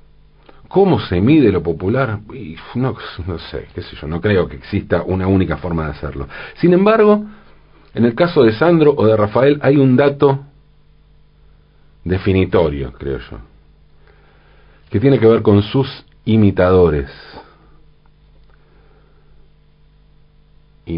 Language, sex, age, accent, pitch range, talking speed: Spanish, male, 40-59, Argentinian, 85-140 Hz, 125 wpm